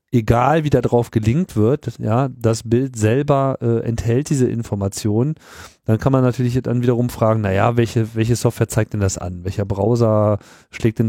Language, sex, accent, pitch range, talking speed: German, male, German, 110-130 Hz, 185 wpm